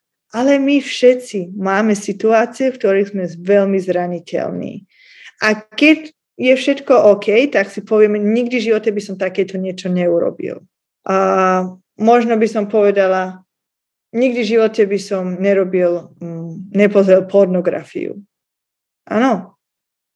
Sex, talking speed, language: female, 120 wpm, Slovak